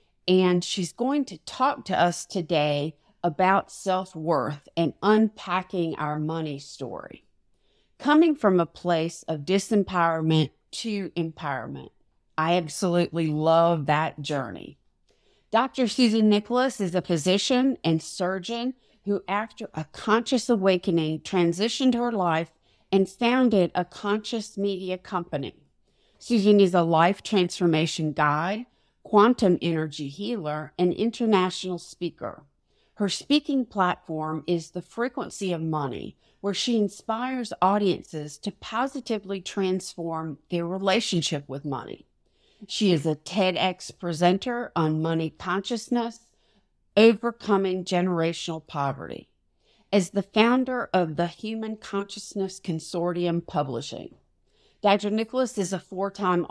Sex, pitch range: female, 165-215 Hz